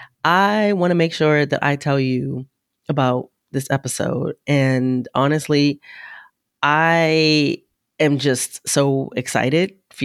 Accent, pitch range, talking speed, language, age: American, 130-150 Hz, 120 wpm, English, 30-49